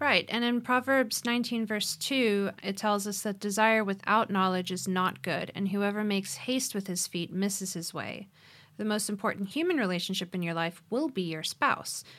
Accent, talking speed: American, 190 wpm